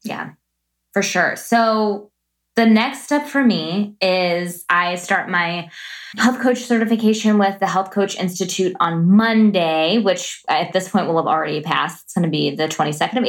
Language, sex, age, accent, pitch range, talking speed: English, female, 20-39, American, 165-215 Hz, 170 wpm